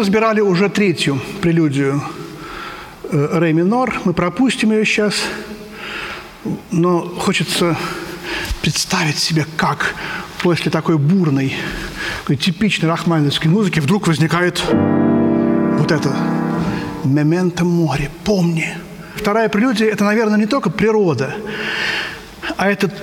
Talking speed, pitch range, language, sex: 105 wpm, 165-210 Hz, Russian, male